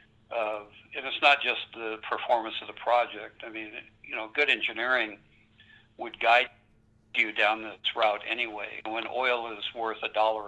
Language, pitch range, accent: English, 110-115 Hz, American